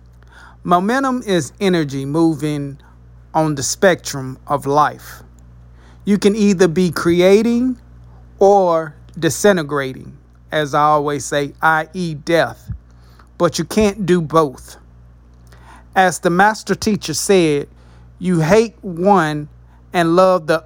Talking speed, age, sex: 110 wpm, 40-59, male